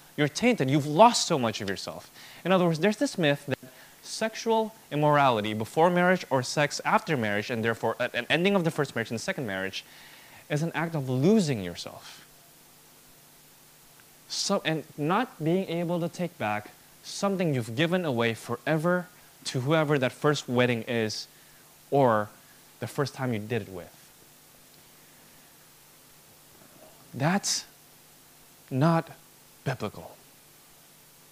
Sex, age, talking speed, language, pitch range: male, 20-39, 140 wpm, English, 130-180 Hz